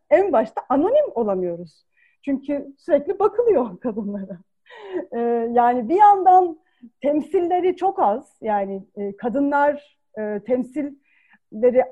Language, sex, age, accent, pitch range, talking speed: Turkish, female, 40-59, native, 240-345 Hz, 85 wpm